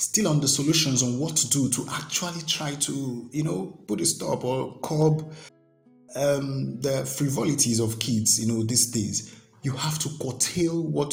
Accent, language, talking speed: Nigerian, English, 180 wpm